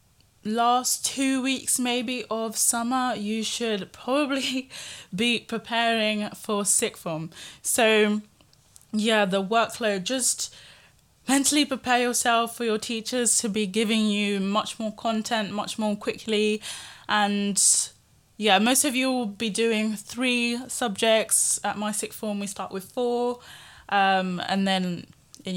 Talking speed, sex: 135 wpm, female